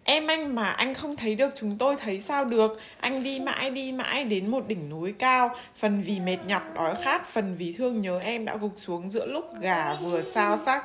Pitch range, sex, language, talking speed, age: 210-275 Hz, female, Vietnamese, 230 wpm, 20-39